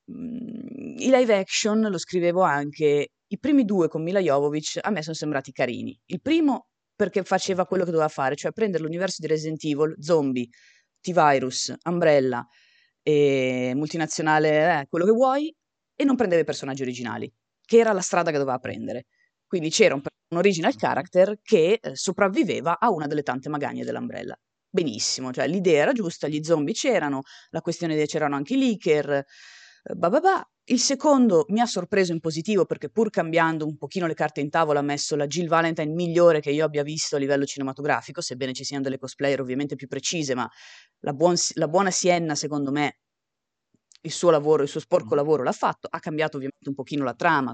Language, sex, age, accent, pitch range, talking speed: Italian, female, 20-39, native, 140-185 Hz, 180 wpm